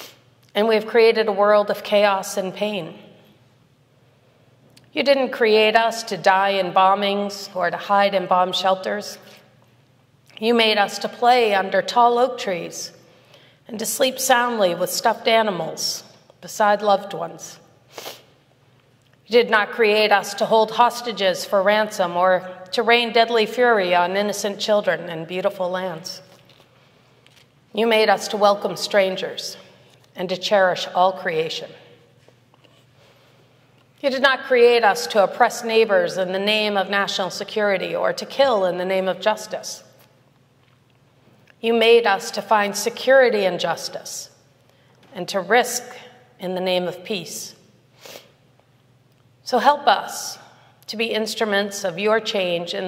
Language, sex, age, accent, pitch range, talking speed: English, female, 40-59, American, 140-215 Hz, 140 wpm